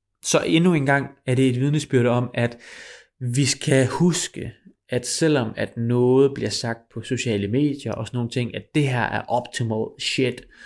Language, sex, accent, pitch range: Danish, male, native, 110-135 Hz